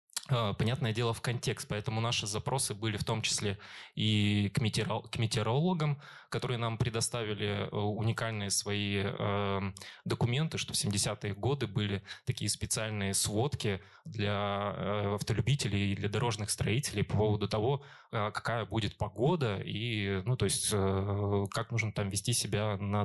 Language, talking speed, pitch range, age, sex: Russian, 130 wpm, 105-125 Hz, 20-39, male